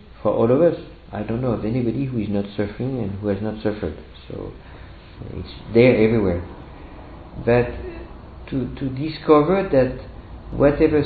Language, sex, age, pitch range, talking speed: English, male, 50-69, 95-130 Hz, 155 wpm